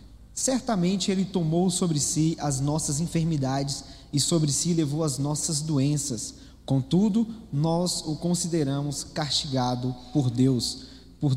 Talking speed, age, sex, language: 120 wpm, 20-39, male, Portuguese